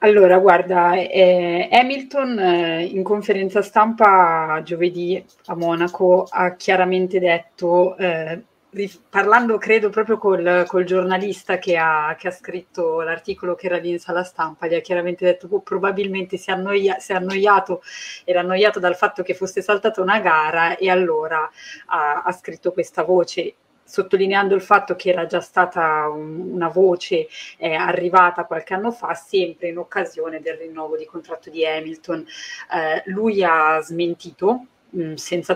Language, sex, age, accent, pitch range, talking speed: Italian, female, 30-49, native, 165-190 Hz, 155 wpm